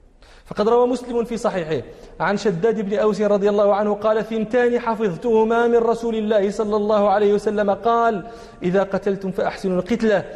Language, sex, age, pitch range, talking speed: Arabic, male, 30-49, 195-235 Hz, 155 wpm